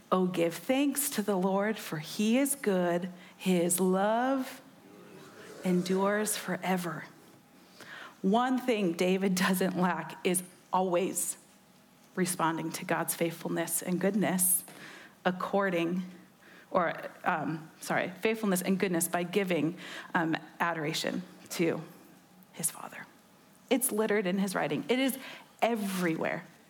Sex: female